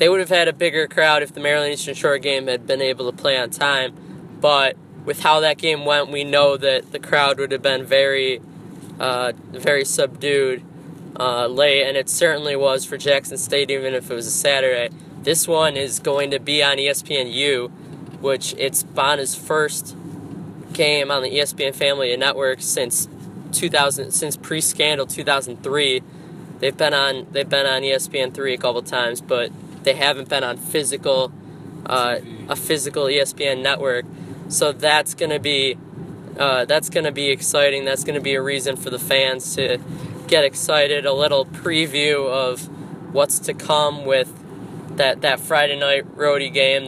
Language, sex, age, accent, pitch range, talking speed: English, male, 20-39, American, 135-155 Hz, 170 wpm